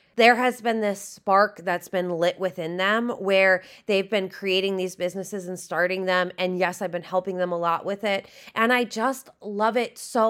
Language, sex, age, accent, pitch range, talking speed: English, female, 20-39, American, 195-250 Hz, 205 wpm